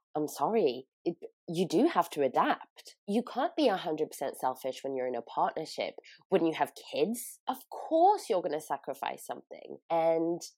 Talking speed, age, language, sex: 170 wpm, 20-39, English, female